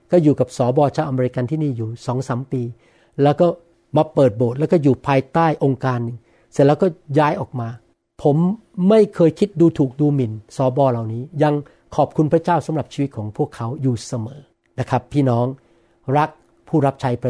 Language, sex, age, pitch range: Thai, male, 60-79, 130-175 Hz